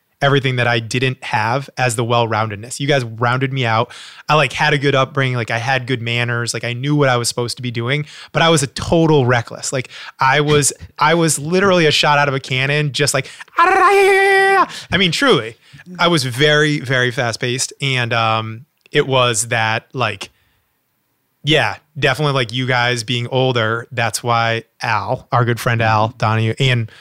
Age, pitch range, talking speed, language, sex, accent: 20-39, 115-140 Hz, 190 wpm, English, male, American